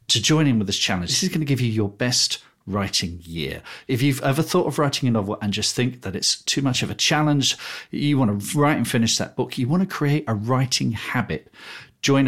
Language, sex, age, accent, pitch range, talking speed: English, male, 40-59, British, 105-140 Hz, 245 wpm